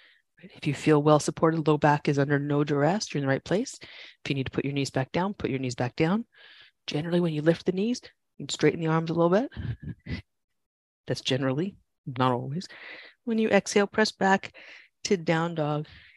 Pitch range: 130-170 Hz